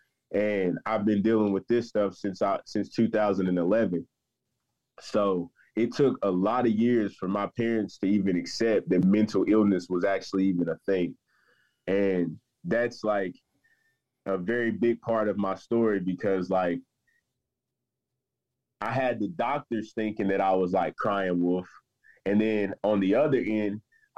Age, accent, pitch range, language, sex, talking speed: 20-39, American, 95-120 Hz, English, male, 150 wpm